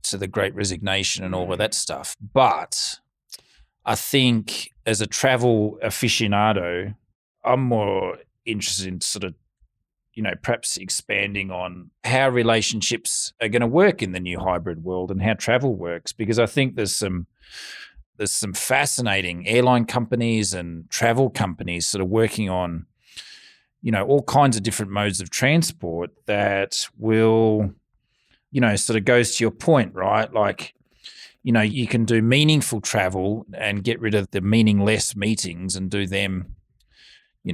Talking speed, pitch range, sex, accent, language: 155 wpm, 95-115 Hz, male, Australian, English